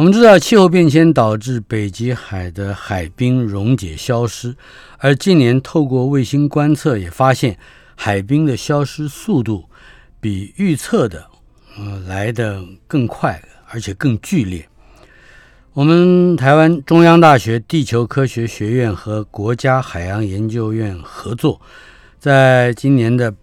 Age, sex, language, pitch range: 50-69, male, Chinese, 105-145 Hz